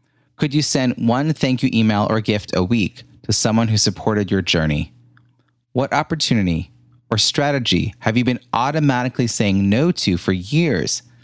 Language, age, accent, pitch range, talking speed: English, 30-49, American, 100-125 Hz, 160 wpm